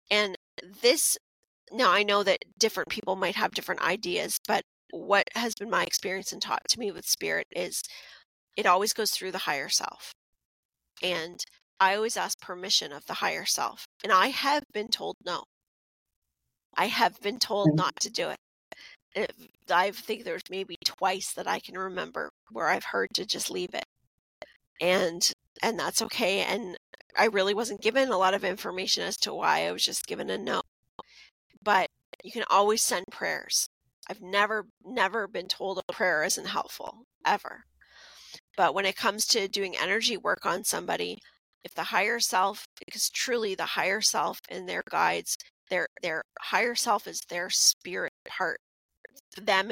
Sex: female